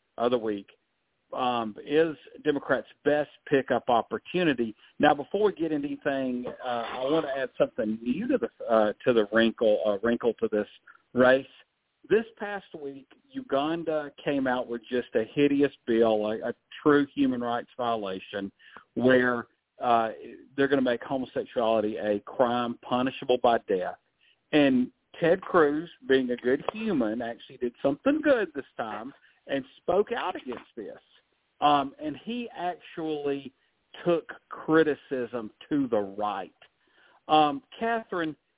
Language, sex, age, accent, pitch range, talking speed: English, male, 50-69, American, 120-160 Hz, 140 wpm